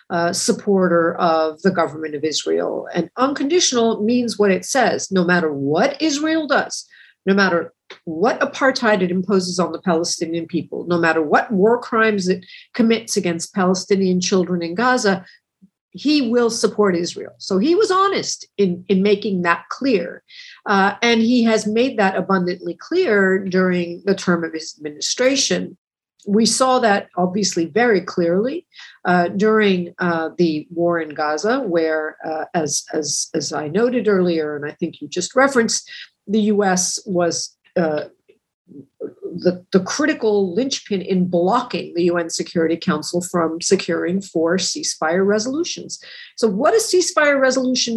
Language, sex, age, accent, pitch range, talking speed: English, female, 50-69, American, 170-235 Hz, 150 wpm